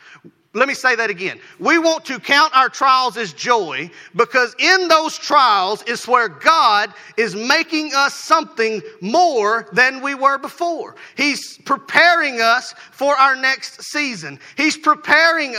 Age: 40-59